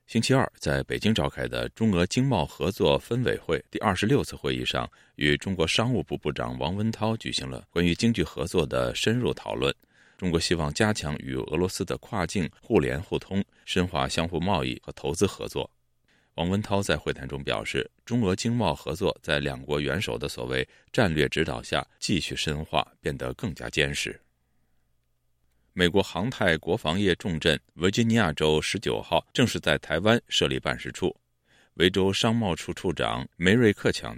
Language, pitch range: Chinese, 65-95 Hz